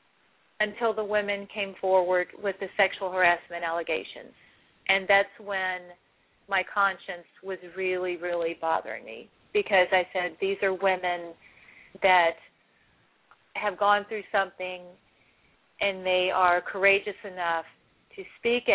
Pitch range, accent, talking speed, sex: 180-200 Hz, American, 120 wpm, female